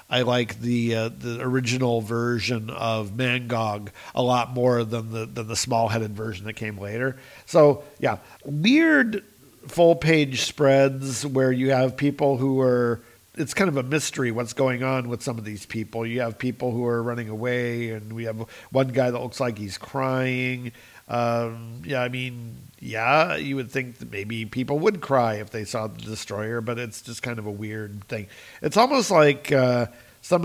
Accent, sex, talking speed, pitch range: American, male, 185 wpm, 115-135 Hz